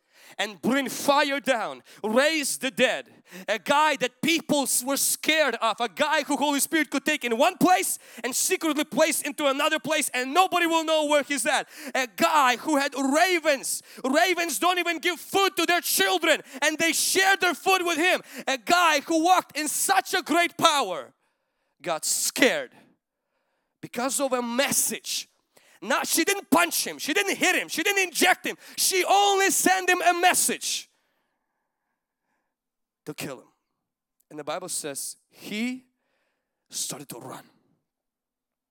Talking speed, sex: 160 wpm, male